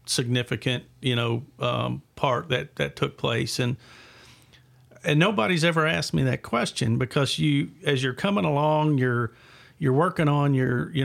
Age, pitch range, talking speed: 50-69, 125-145 Hz, 155 wpm